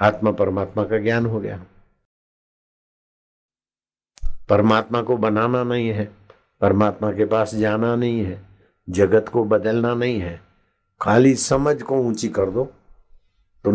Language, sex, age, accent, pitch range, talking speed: Hindi, male, 60-79, native, 100-120 Hz, 125 wpm